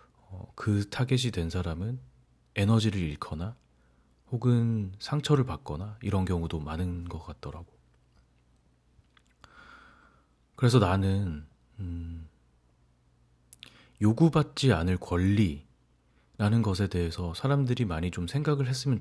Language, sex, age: Korean, male, 40-59